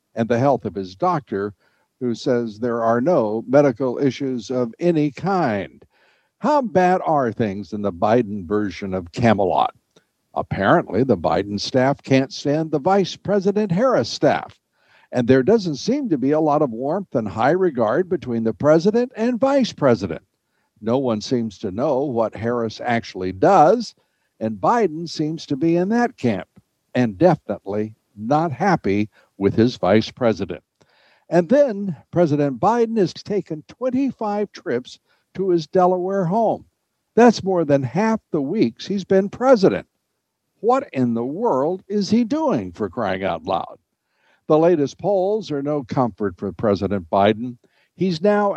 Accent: American